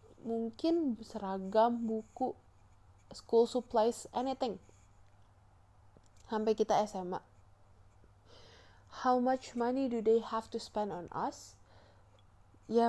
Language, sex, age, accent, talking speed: Indonesian, female, 20-39, native, 95 wpm